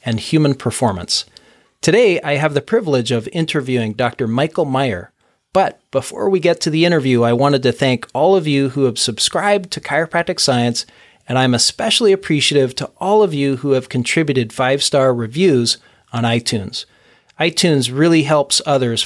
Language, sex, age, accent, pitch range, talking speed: English, male, 40-59, American, 125-155 Hz, 165 wpm